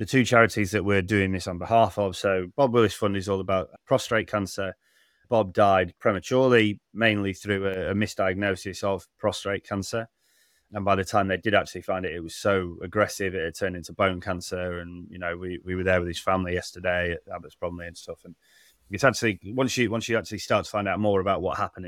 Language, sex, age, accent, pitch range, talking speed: English, male, 20-39, British, 90-105 Hz, 220 wpm